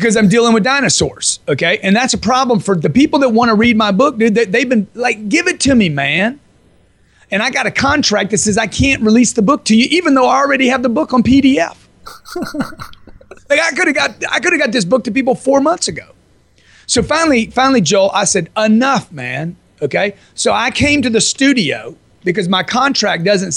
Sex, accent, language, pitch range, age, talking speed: male, American, English, 180-250 Hz, 30-49, 210 wpm